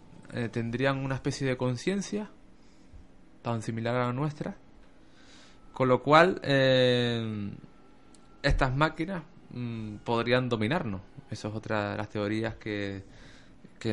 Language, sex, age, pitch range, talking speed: Spanish, male, 20-39, 110-135 Hz, 120 wpm